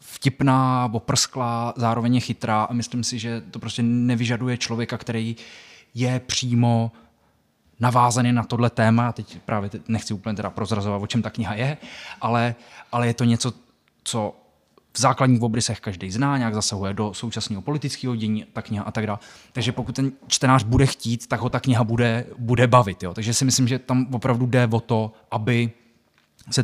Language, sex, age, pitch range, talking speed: Czech, male, 20-39, 115-130 Hz, 175 wpm